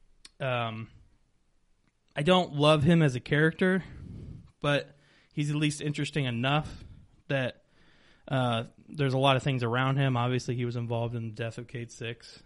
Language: English